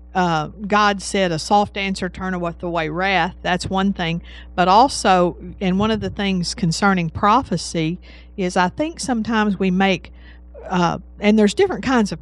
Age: 50-69